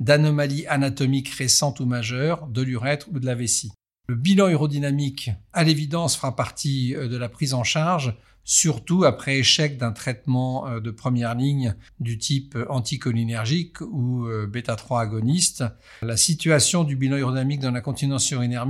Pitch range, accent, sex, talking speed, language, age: 120-145 Hz, French, male, 150 wpm, French, 50-69